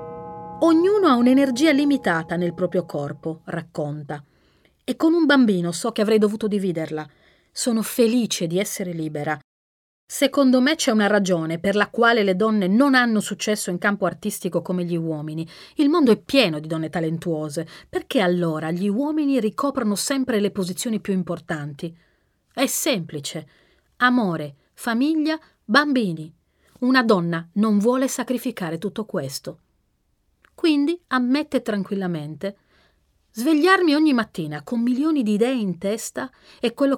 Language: Italian